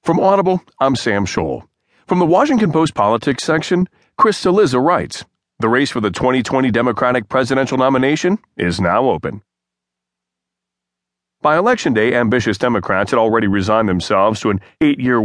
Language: English